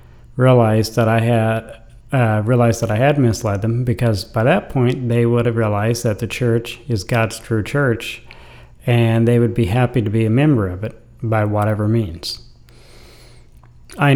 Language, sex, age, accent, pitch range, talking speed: English, male, 40-59, American, 110-125 Hz, 175 wpm